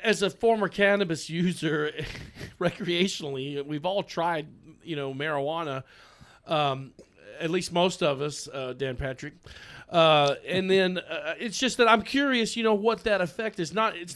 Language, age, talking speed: English, 40-59, 160 wpm